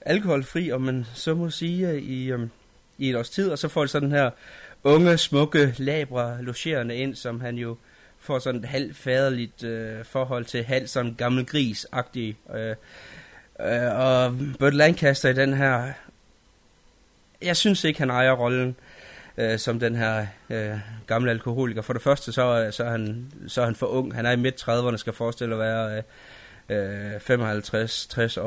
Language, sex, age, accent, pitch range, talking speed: Danish, male, 20-39, native, 115-135 Hz, 175 wpm